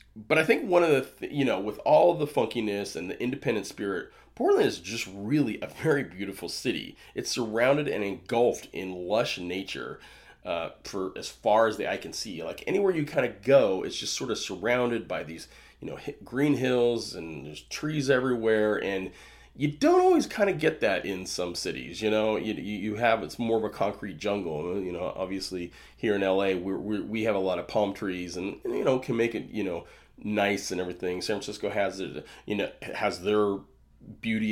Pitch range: 95-120 Hz